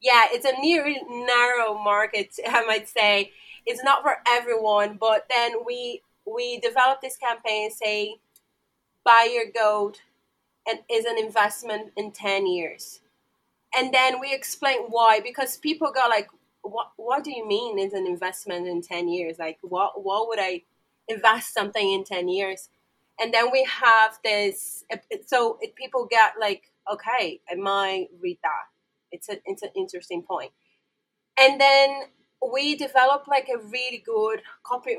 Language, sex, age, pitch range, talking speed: English, female, 20-39, 195-265 Hz, 155 wpm